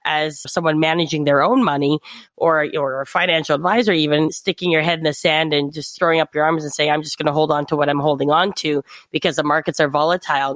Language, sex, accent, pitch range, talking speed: English, female, American, 150-175 Hz, 240 wpm